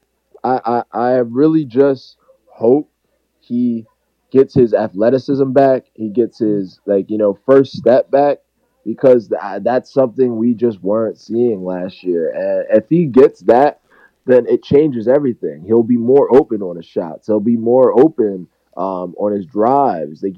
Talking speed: 160 wpm